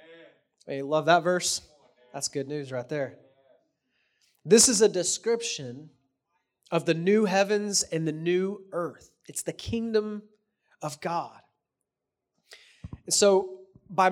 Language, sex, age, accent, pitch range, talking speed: English, male, 30-49, American, 150-195 Hz, 120 wpm